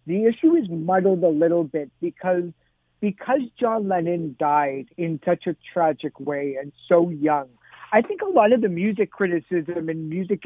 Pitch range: 160-190 Hz